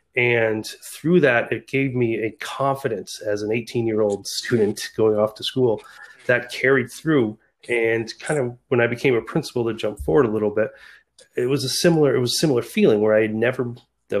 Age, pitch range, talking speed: 30-49, 110-130 Hz, 205 wpm